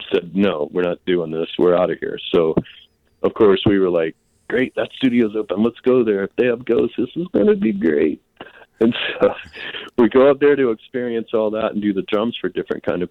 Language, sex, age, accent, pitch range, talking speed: English, male, 40-59, American, 95-125 Hz, 230 wpm